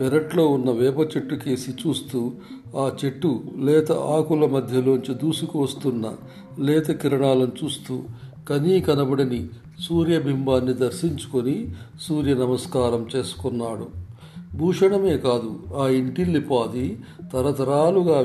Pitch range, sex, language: 125-150 Hz, male, Telugu